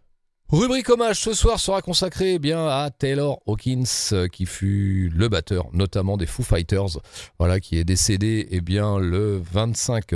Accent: French